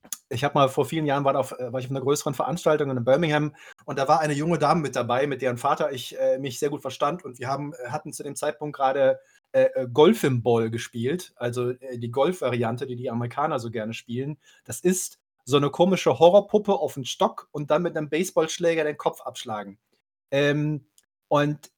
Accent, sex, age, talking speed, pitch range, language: German, male, 30-49, 200 wpm, 130-175 Hz, German